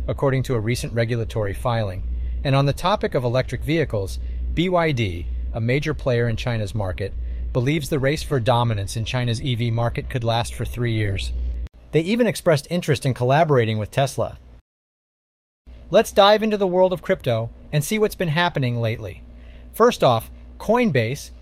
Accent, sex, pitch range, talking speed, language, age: American, male, 115-165 Hz, 165 wpm, English, 30-49